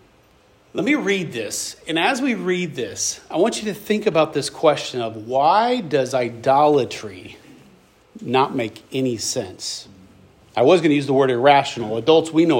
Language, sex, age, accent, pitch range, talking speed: English, male, 40-59, American, 140-215 Hz, 170 wpm